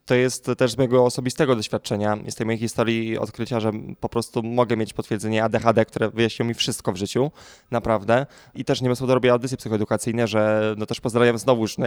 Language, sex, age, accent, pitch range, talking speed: Polish, male, 20-39, native, 110-125 Hz, 195 wpm